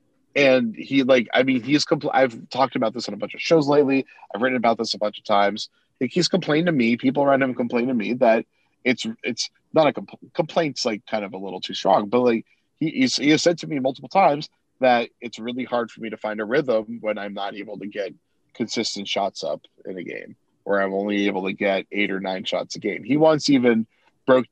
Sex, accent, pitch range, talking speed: male, American, 100-130 Hz, 240 wpm